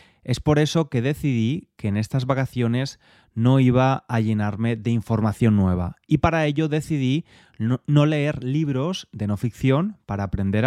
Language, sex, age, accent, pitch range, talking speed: Spanish, male, 20-39, Spanish, 110-140 Hz, 155 wpm